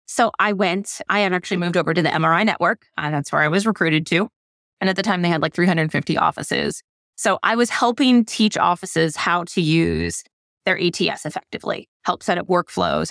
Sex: female